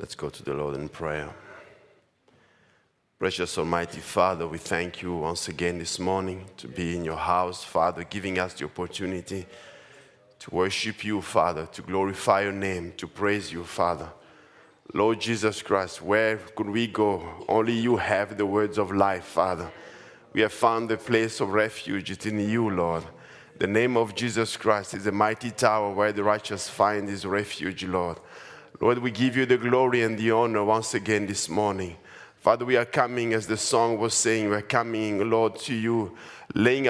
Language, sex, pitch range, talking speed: English, male, 95-125 Hz, 175 wpm